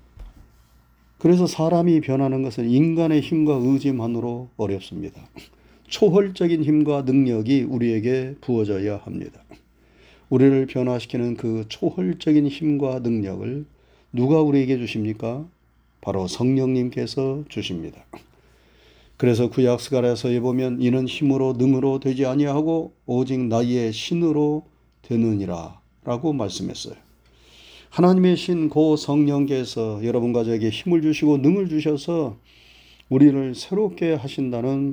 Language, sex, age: Korean, male, 40-59